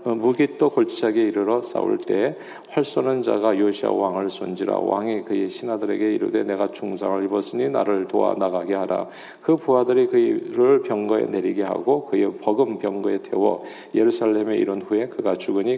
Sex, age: male, 40-59